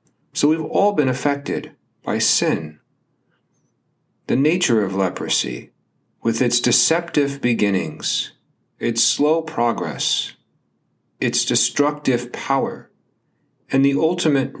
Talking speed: 100 wpm